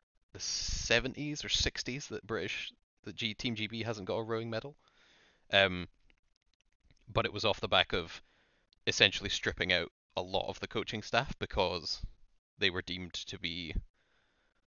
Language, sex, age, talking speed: English, male, 20-39, 155 wpm